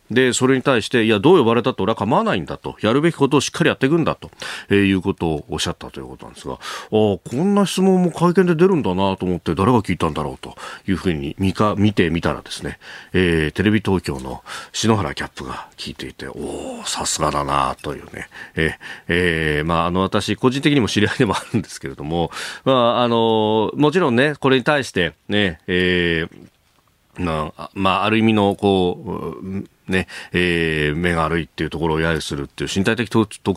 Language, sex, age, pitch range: Japanese, male, 40-59, 90-130 Hz